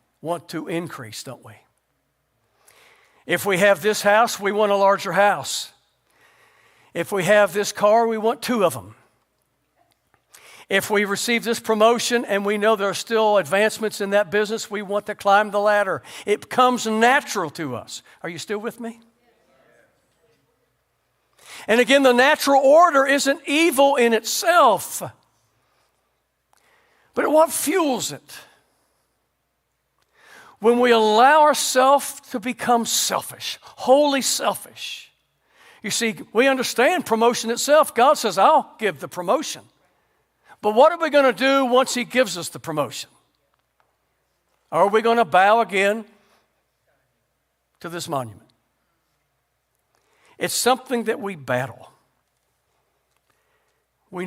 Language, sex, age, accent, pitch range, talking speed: English, male, 60-79, American, 190-250 Hz, 130 wpm